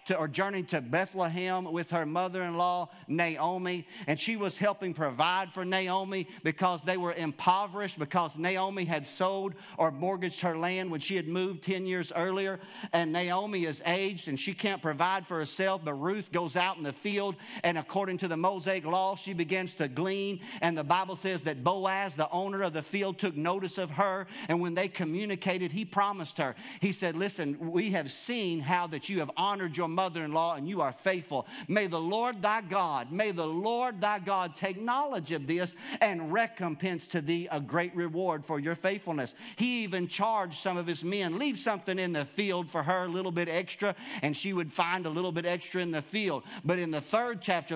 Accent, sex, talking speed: American, male, 200 wpm